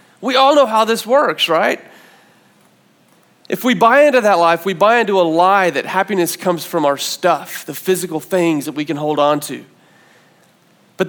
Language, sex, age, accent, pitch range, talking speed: English, male, 30-49, American, 165-220 Hz, 185 wpm